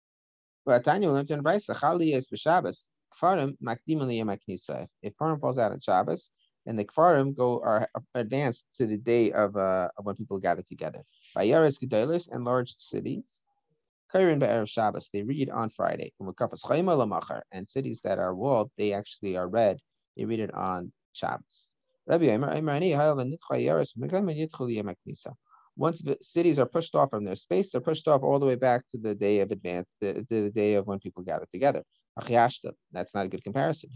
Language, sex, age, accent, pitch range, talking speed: English, male, 30-49, American, 105-155 Hz, 140 wpm